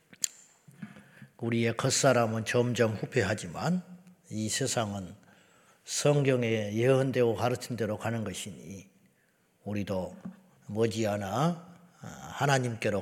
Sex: male